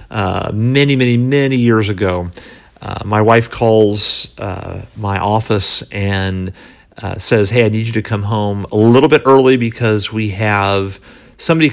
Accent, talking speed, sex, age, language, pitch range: American, 160 wpm, male, 50-69, English, 100-125 Hz